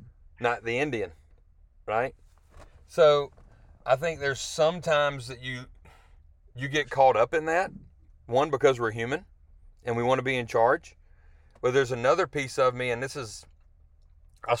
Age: 30-49